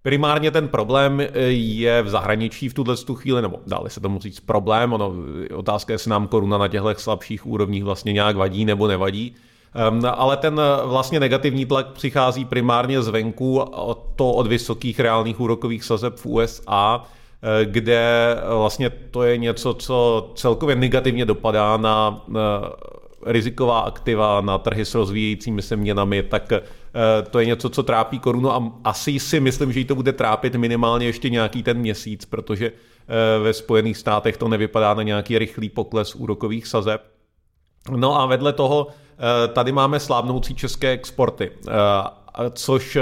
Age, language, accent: 30-49, Czech, native